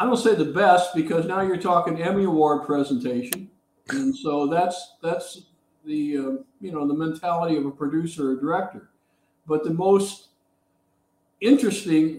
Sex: male